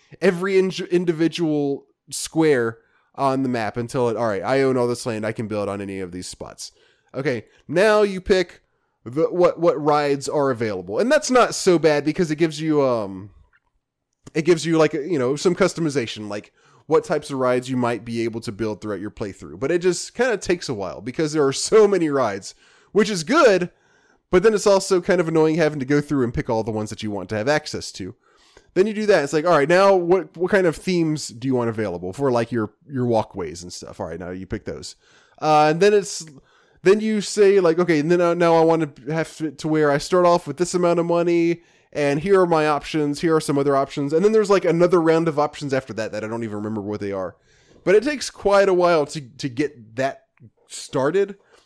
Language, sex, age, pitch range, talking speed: English, male, 20-39, 125-180 Hz, 230 wpm